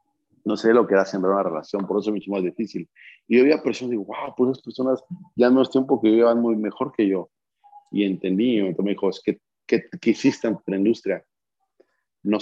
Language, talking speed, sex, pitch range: Spanish, 220 wpm, male, 95-115 Hz